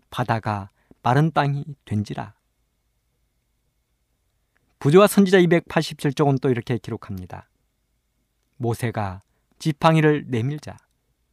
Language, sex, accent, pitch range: Korean, male, native, 115-175 Hz